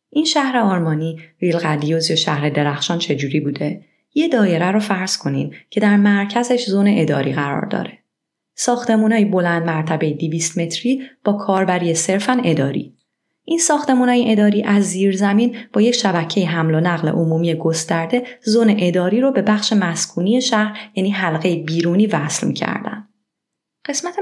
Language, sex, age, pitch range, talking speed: Persian, female, 30-49, 165-225 Hz, 140 wpm